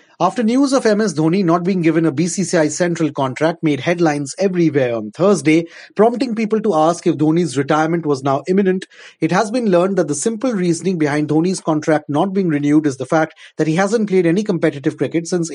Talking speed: 200 wpm